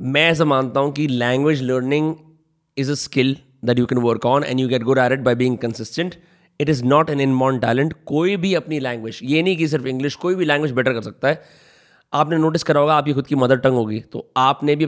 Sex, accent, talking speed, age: male, native, 240 wpm, 30-49